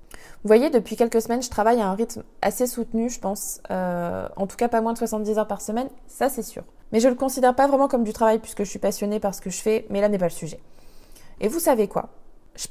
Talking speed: 270 wpm